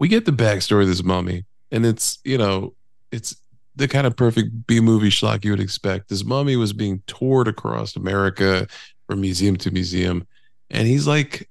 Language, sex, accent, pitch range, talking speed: English, male, American, 95-120 Hz, 180 wpm